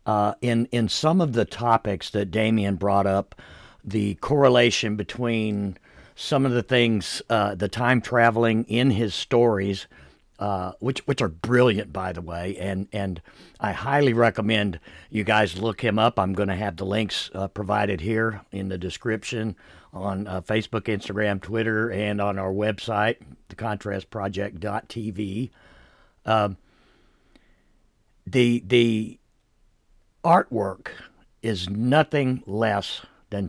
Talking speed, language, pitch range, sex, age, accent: 130 wpm, English, 100-120 Hz, male, 60-79, American